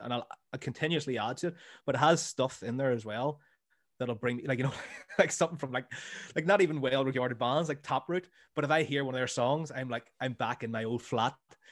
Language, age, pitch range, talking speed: English, 20-39, 120-160 Hz, 245 wpm